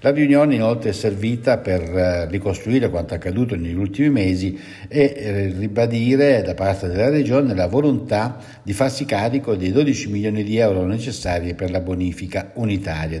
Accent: native